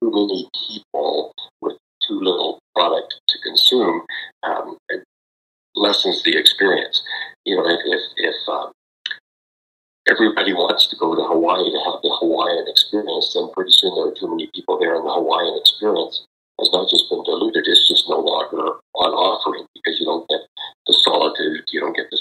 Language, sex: English, male